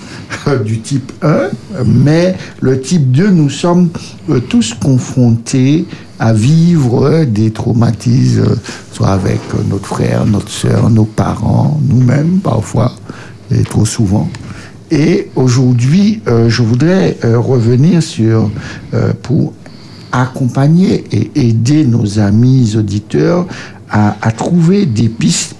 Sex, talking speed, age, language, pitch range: male, 110 wpm, 60-79, French, 110-145 Hz